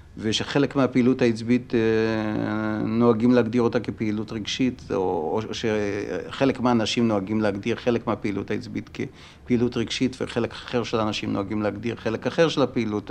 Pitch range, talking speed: 110-130 Hz, 130 wpm